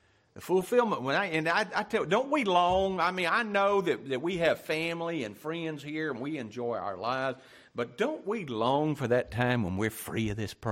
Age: 60-79